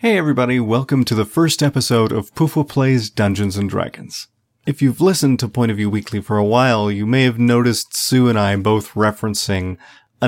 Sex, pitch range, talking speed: male, 100-125 Hz, 195 wpm